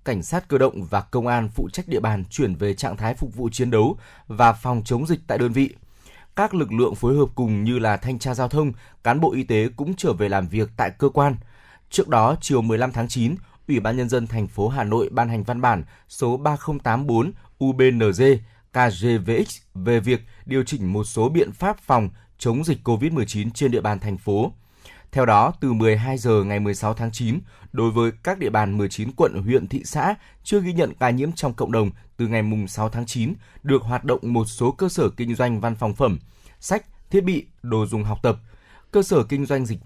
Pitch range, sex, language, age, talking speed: 110-135 Hz, male, Vietnamese, 20-39, 220 wpm